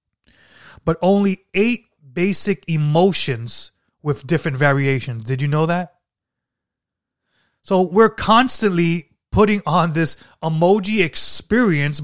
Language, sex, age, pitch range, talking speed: English, male, 30-49, 120-180 Hz, 100 wpm